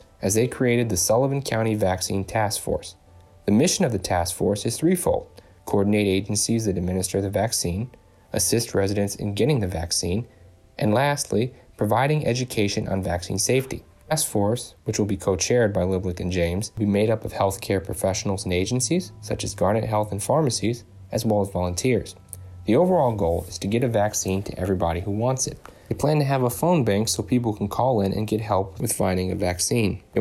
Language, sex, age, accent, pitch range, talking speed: English, male, 30-49, American, 95-120 Hz, 195 wpm